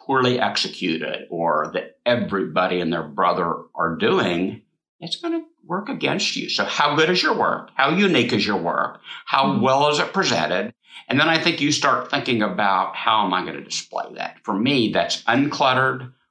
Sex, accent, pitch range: male, American, 105-165 Hz